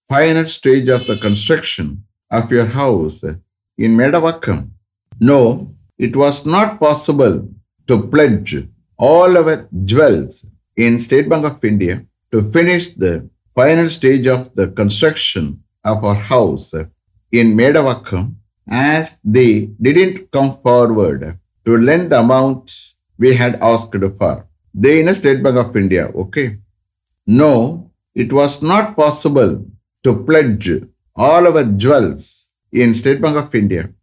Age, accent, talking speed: 60-79, Indian, 135 wpm